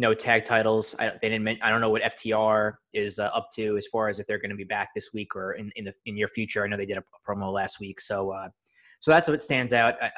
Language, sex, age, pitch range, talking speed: English, male, 20-39, 105-120 Hz, 300 wpm